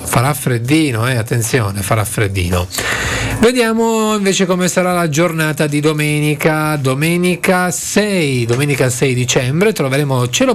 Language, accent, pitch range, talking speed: Italian, native, 125-195 Hz, 120 wpm